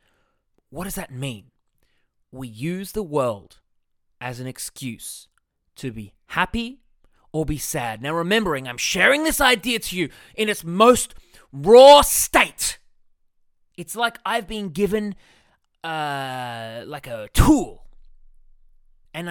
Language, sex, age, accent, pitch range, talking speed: English, male, 20-39, Australian, 130-200 Hz, 125 wpm